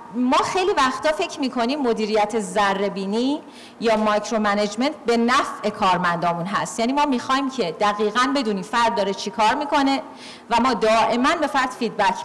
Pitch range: 205-280 Hz